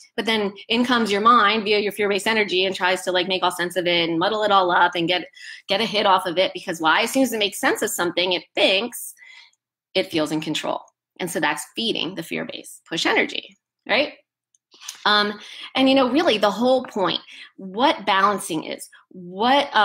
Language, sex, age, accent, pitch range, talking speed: English, female, 20-39, American, 180-220 Hz, 210 wpm